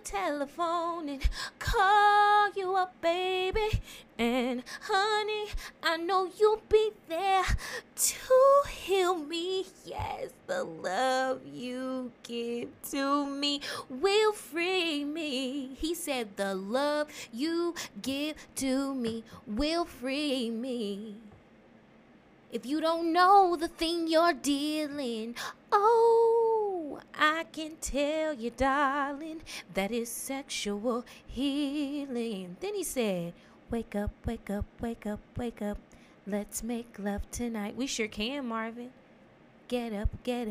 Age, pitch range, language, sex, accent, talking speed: 20-39, 235-340 Hz, English, female, American, 115 wpm